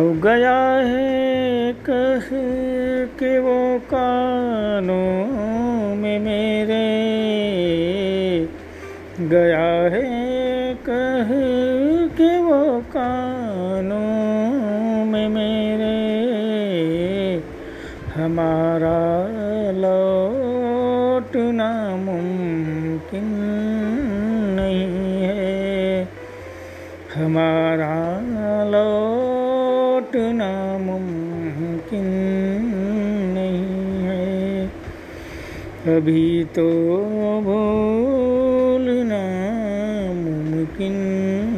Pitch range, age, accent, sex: 190-250 Hz, 40-59, native, male